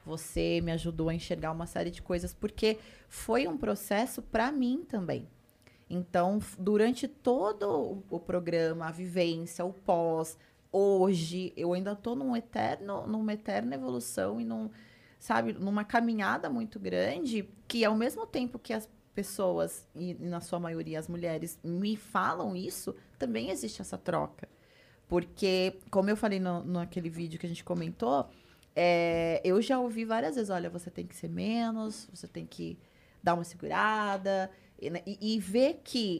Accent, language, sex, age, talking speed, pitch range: Brazilian, Portuguese, female, 20-39, 160 wpm, 170-230 Hz